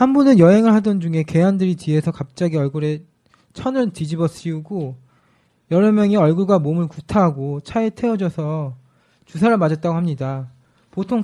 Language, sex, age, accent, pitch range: Korean, male, 20-39, native, 150-200 Hz